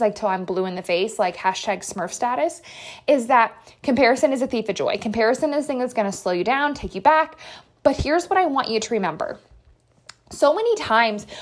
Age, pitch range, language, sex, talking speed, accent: 20-39, 210-295 Hz, English, female, 215 wpm, American